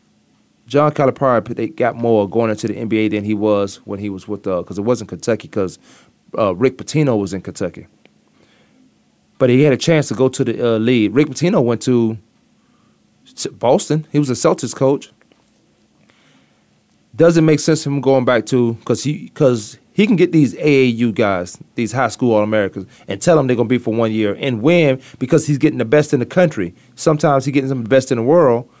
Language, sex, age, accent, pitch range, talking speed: English, male, 30-49, American, 115-150 Hz, 200 wpm